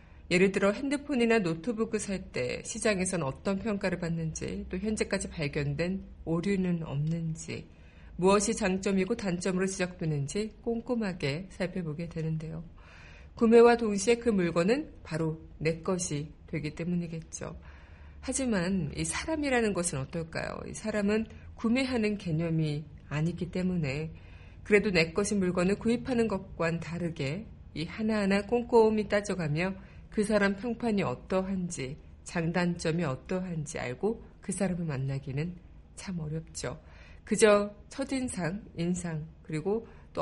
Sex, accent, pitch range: female, native, 160-215 Hz